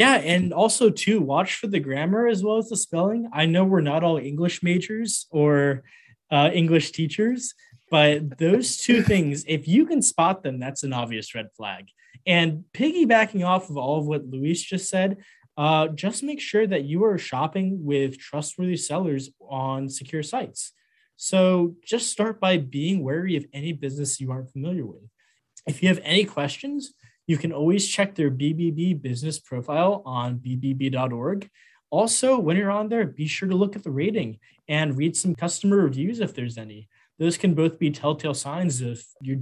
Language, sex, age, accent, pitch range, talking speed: English, male, 20-39, American, 140-195 Hz, 180 wpm